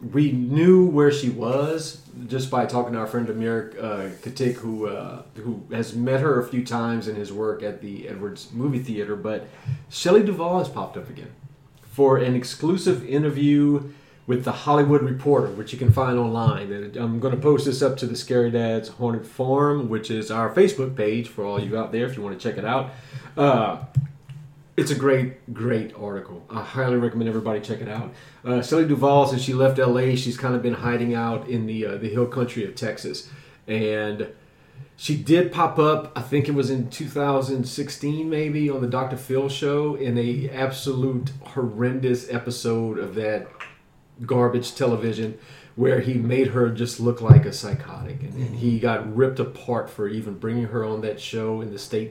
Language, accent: English, American